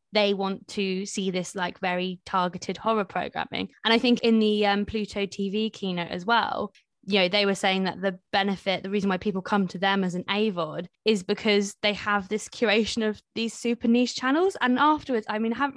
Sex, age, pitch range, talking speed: female, 20-39, 190-230 Hz, 215 wpm